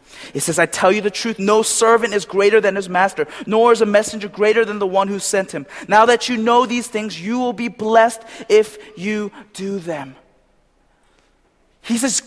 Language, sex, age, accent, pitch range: Korean, male, 20-39, American, 220-275 Hz